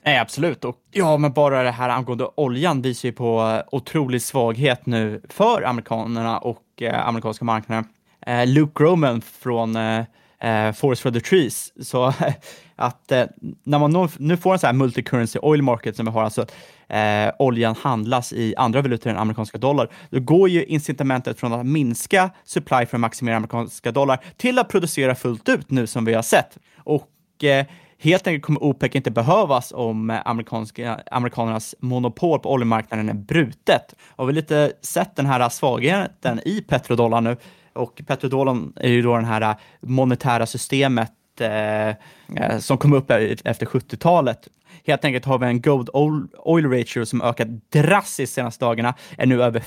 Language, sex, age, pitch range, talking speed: Swedish, male, 20-39, 115-145 Hz, 175 wpm